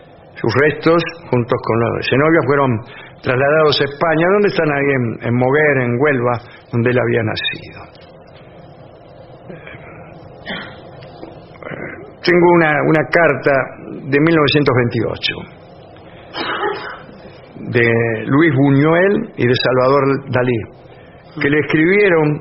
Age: 50-69